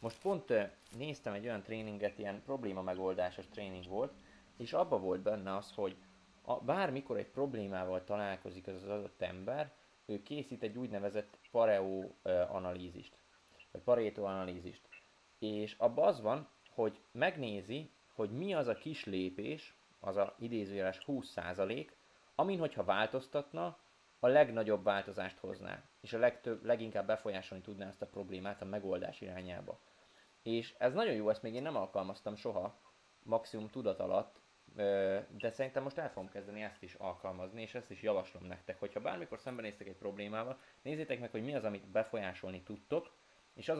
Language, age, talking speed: Hungarian, 20-39, 150 wpm